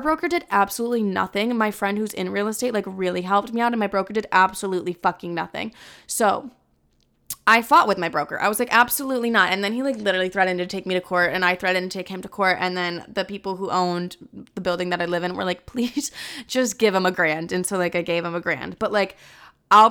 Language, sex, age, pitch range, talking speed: English, female, 20-39, 180-225 Hz, 250 wpm